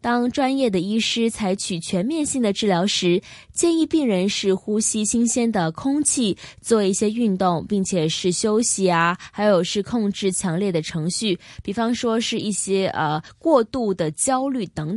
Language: Chinese